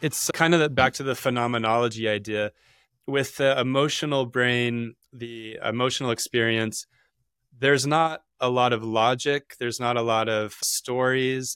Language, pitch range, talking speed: English, 110-130 Hz, 145 wpm